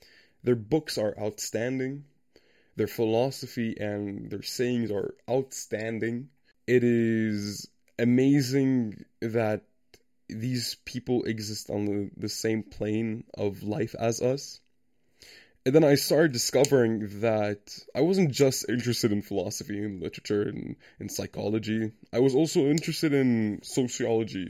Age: 10-29